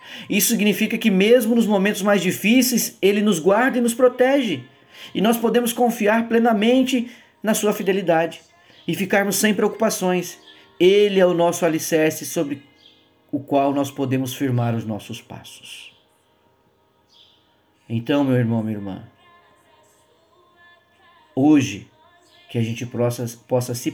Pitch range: 120-175 Hz